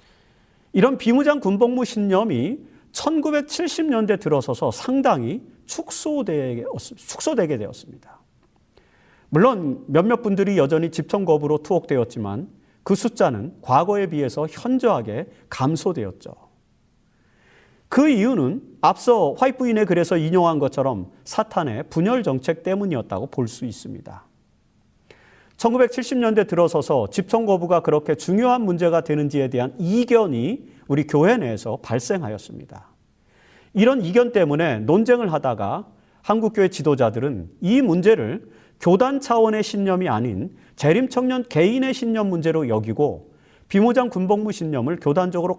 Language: Korean